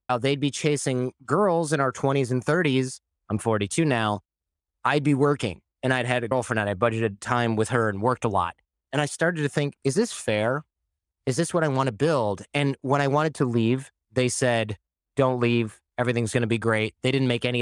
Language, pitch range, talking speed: English, 105-130 Hz, 220 wpm